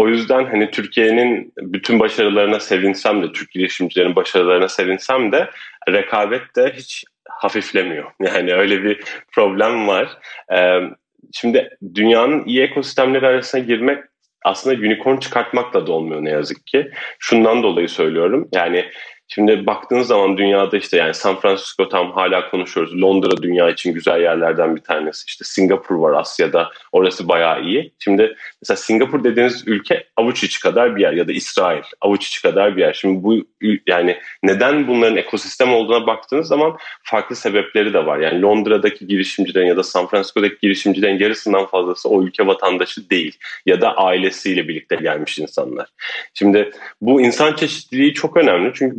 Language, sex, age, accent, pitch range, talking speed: Turkish, male, 30-49, native, 95-130 Hz, 150 wpm